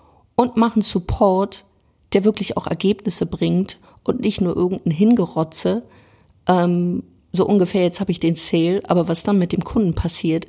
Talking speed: 160 wpm